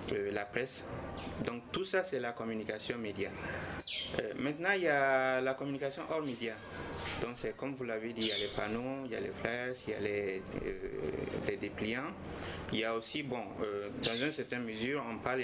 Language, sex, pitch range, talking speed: French, male, 110-135 Hz, 210 wpm